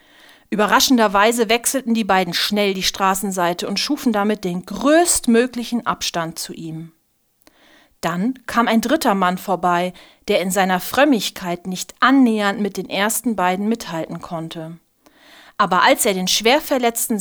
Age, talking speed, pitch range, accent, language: 40-59, 135 wpm, 185-245 Hz, German, German